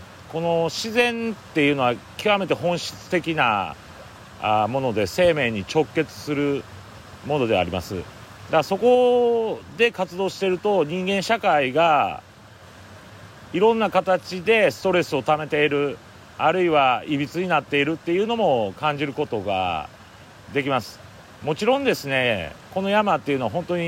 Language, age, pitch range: Japanese, 40-59, 105-180 Hz